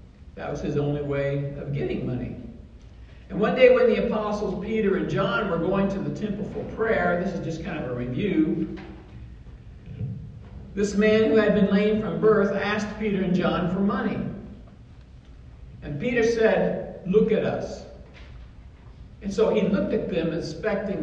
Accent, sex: American, male